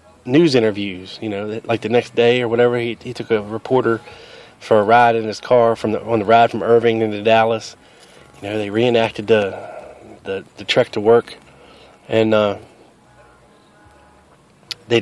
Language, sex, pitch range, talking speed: English, male, 110-125 Hz, 170 wpm